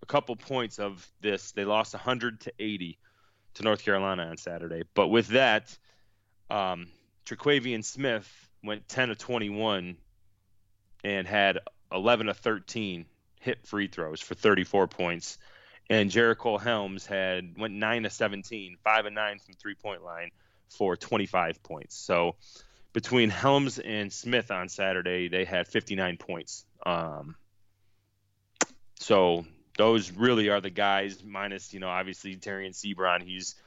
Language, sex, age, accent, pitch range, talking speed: English, male, 30-49, American, 95-110 Hz, 145 wpm